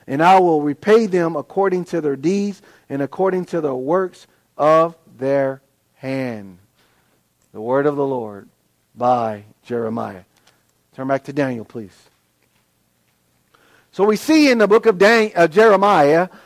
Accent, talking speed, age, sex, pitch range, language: American, 140 wpm, 50-69, male, 155-225 Hz, English